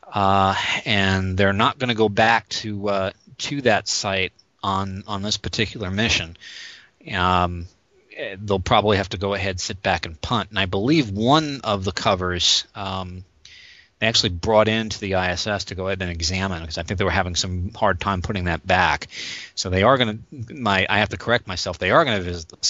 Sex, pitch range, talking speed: male, 95-110 Hz, 205 wpm